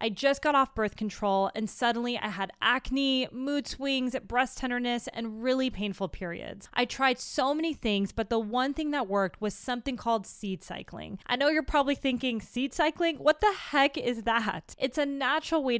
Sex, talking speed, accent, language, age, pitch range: female, 195 wpm, American, English, 20-39, 205-265 Hz